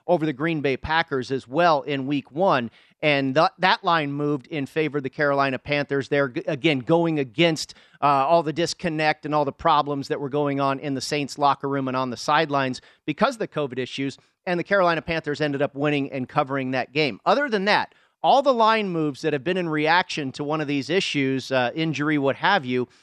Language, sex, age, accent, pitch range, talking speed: English, male, 40-59, American, 140-165 Hz, 215 wpm